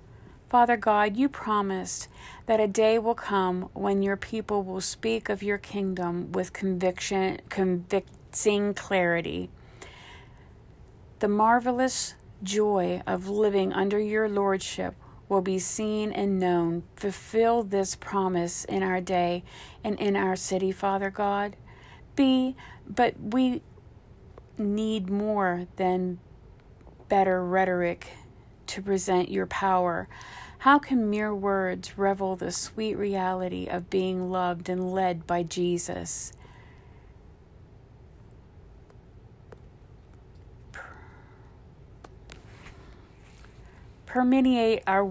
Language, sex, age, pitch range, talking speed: English, female, 40-59, 170-205 Hz, 100 wpm